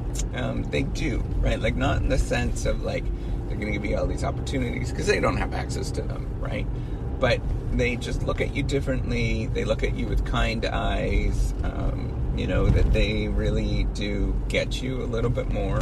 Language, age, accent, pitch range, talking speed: English, 30-49, American, 105-125 Hz, 205 wpm